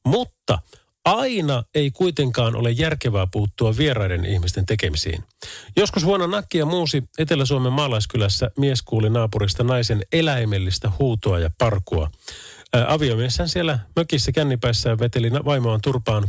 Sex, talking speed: male, 115 wpm